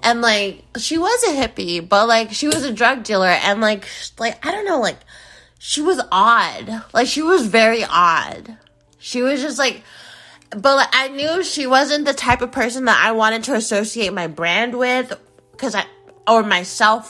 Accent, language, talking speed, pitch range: American, English, 190 wpm, 180-250 Hz